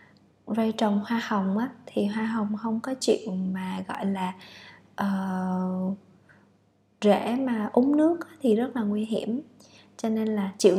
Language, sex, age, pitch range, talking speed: Vietnamese, female, 20-39, 205-240 Hz, 160 wpm